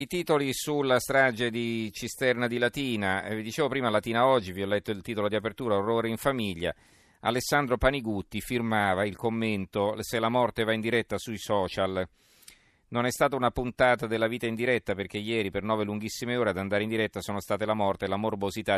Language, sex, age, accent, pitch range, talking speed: Italian, male, 40-59, native, 95-115 Hz, 200 wpm